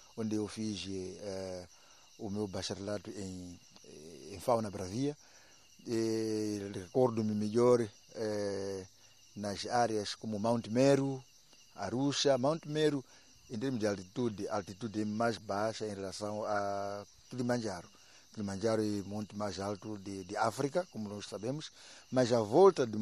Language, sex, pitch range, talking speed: Portuguese, male, 100-120 Hz, 135 wpm